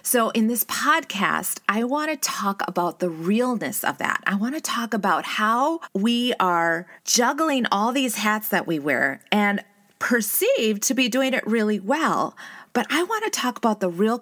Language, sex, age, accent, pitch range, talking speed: English, female, 30-49, American, 180-230 Hz, 185 wpm